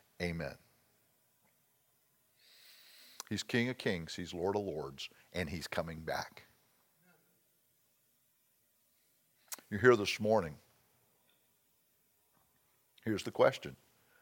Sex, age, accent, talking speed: male, 50-69, American, 85 wpm